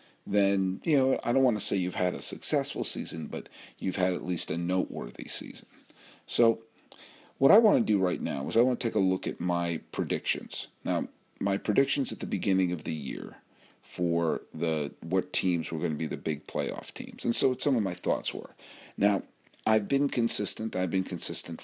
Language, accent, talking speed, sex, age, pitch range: English, American, 210 wpm, male, 40-59, 90-120 Hz